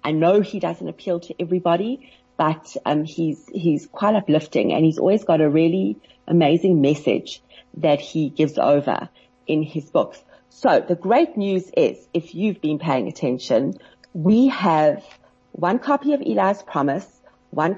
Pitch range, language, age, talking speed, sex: 155-195 Hz, English, 40-59, 155 wpm, female